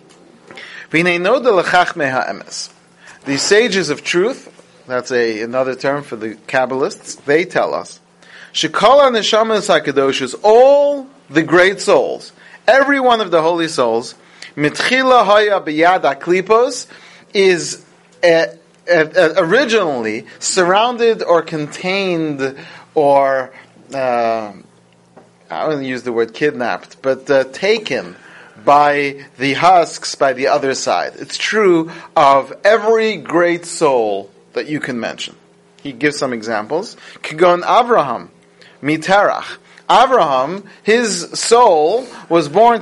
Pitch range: 145-190 Hz